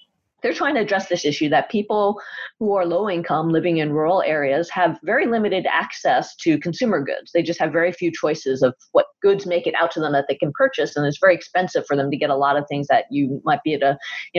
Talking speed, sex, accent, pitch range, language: 250 wpm, female, American, 165-225 Hz, English